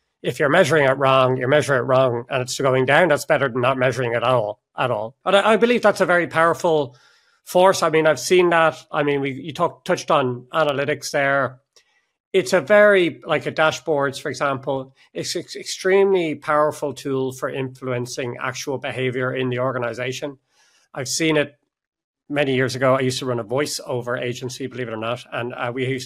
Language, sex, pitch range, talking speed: English, male, 125-155 Hz, 200 wpm